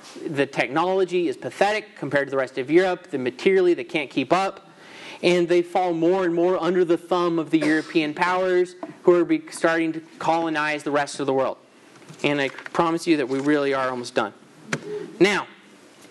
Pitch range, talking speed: 155-195 Hz, 185 wpm